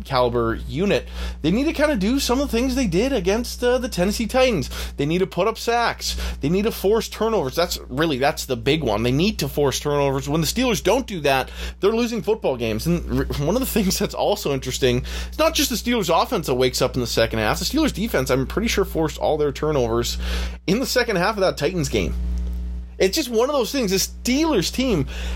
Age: 20-39